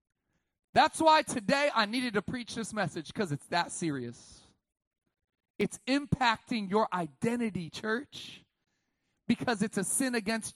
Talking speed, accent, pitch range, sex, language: 130 wpm, American, 195-280 Hz, male, English